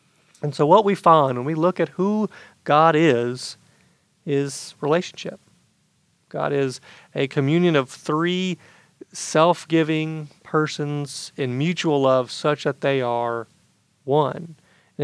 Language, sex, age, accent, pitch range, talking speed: English, male, 40-59, American, 135-165 Hz, 125 wpm